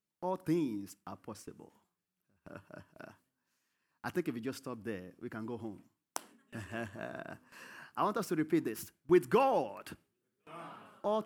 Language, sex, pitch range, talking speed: English, male, 120-200 Hz, 130 wpm